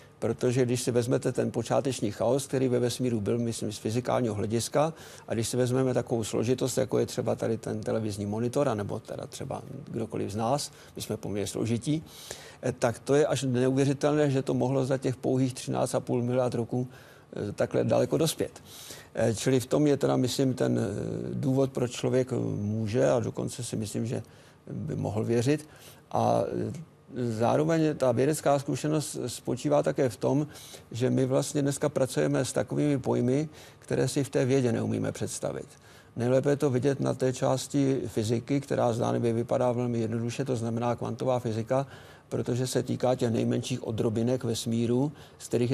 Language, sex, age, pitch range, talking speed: Czech, male, 50-69, 115-135 Hz, 165 wpm